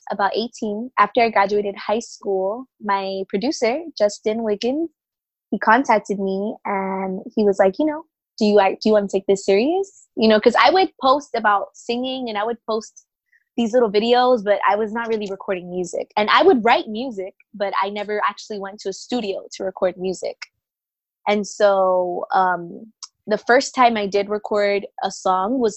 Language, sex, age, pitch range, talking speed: English, female, 20-39, 195-235 Hz, 185 wpm